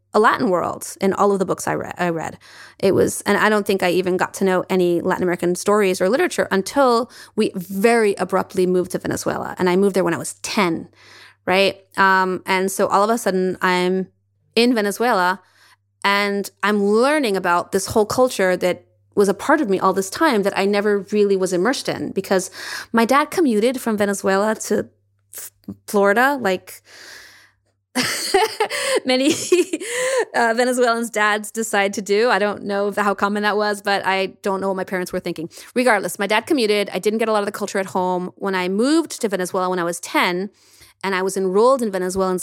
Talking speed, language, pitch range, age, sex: 195 wpm, English, 180-210 Hz, 30-49, female